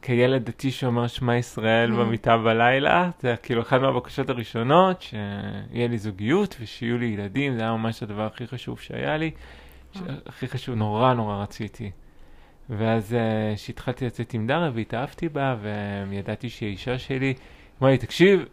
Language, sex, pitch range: Hebrew, male, 115-135 Hz